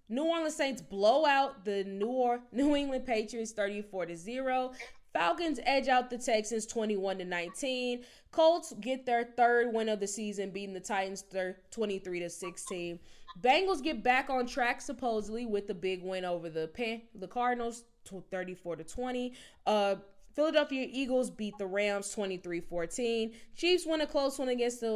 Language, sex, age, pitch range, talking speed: English, female, 10-29, 190-245 Hz, 135 wpm